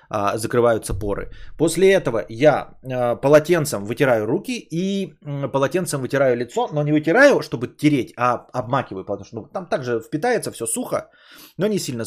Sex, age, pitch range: male, 20-39, 125-170 Hz